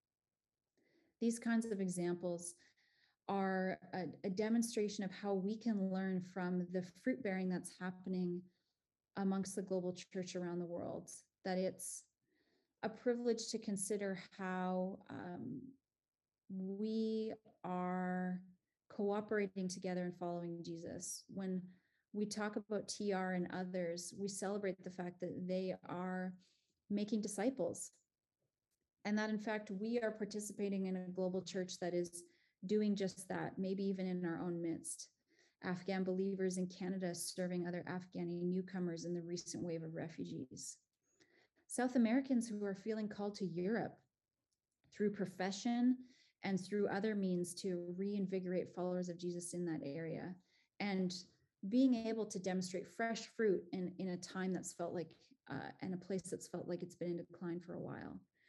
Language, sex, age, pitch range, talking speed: English, female, 30-49, 180-210 Hz, 145 wpm